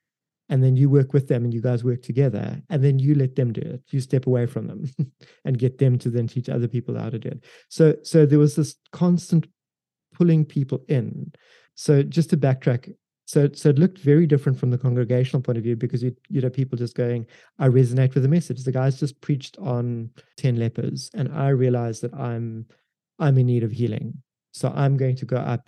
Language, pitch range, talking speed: English, 120-145 Hz, 220 wpm